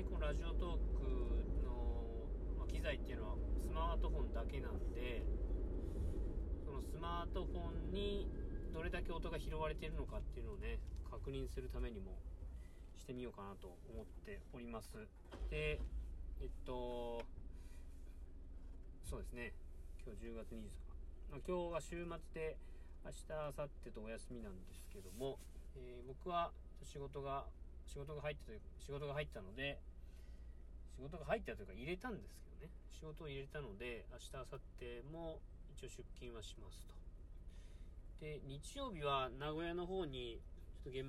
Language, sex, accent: Japanese, male, native